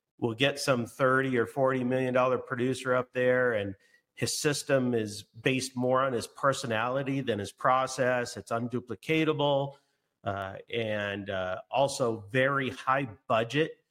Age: 40-59